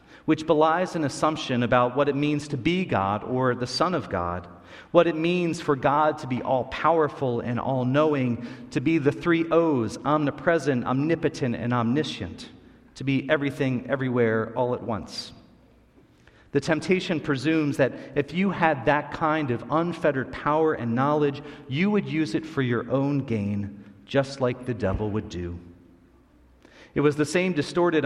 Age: 40-59